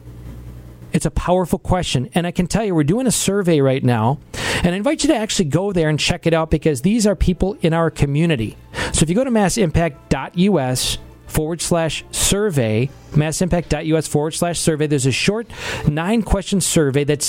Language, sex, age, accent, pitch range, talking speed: English, male, 40-59, American, 140-190 Hz, 185 wpm